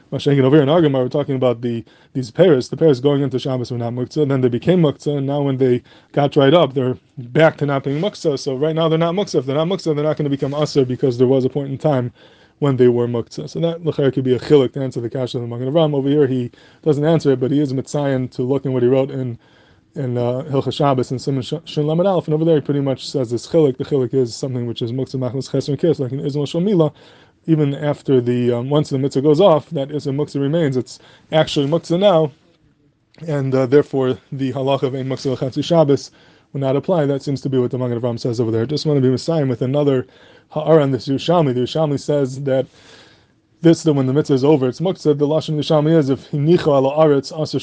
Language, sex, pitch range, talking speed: English, male, 130-155 Hz, 245 wpm